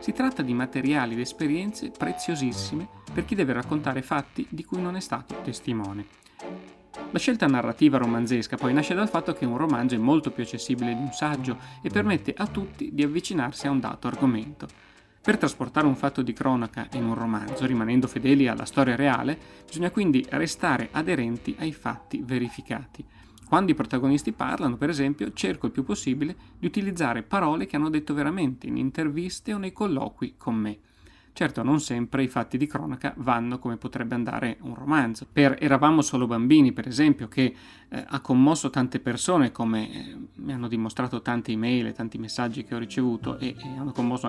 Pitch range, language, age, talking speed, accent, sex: 120-145 Hz, Italian, 30-49, 180 wpm, native, male